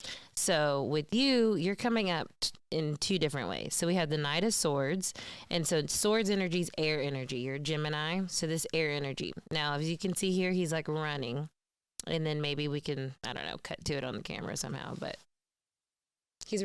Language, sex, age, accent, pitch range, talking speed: English, female, 20-39, American, 160-200 Hz, 200 wpm